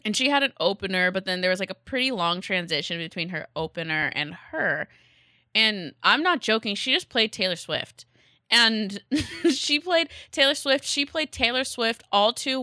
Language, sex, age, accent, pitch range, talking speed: English, female, 20-39, American, 165-220 Hz, 185 wpm